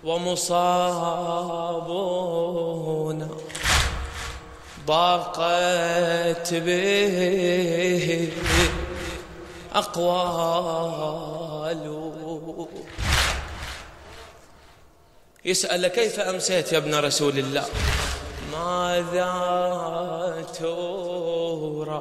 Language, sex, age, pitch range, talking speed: Arabic, male, 20-39, 155-180 Hz, 35 wpm